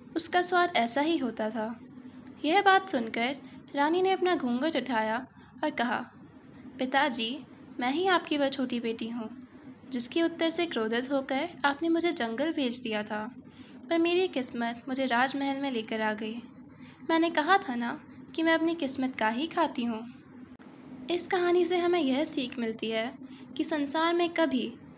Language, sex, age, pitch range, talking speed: Hindi, female, 10-29, 245-315 Hz, 165 wpm